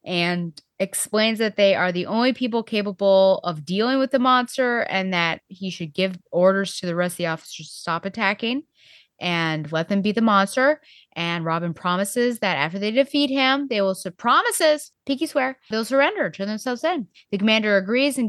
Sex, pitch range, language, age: female, 165-210 Hz, English, 20-39